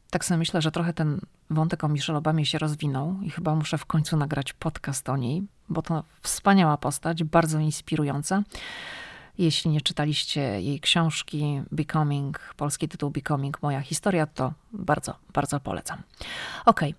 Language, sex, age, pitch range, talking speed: Polish, female, 40-59, 150-175 Hz, 150 wpm